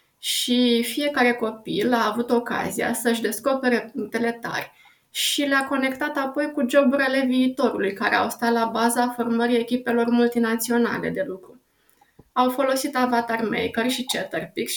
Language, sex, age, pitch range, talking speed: Romanian, female, 20-39, 230-265 Hz, 135 wpm